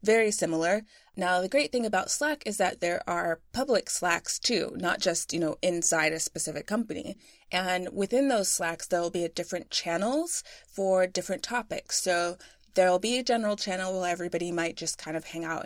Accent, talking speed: American, 185 wpm